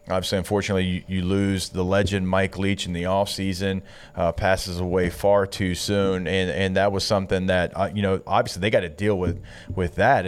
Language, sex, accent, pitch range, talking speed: English, male, American, 95-110 Hz, 200 wpm